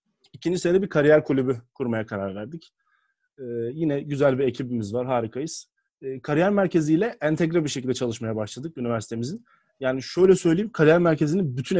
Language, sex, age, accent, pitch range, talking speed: Turkish, male, 30-49, native, 125-180 Hz, 155 wpm